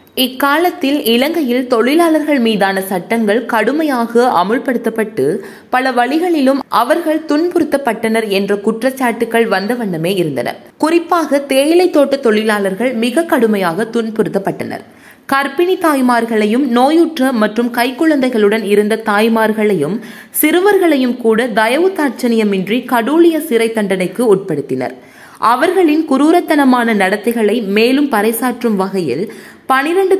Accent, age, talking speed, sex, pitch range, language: native, 20-39, 80 wpm, female, 215-285 Hz, Tamil